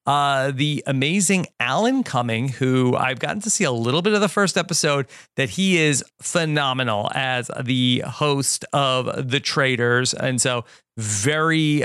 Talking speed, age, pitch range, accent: 150 wpm, 40-59, 130-170 Hz, American